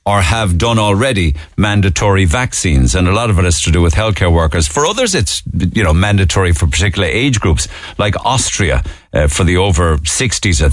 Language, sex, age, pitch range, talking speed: English, male, 50-69, 85-105 Hz, 195 wpm